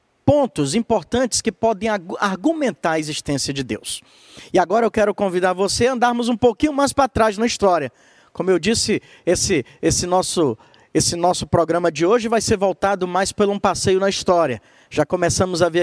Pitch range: 170-225 Hz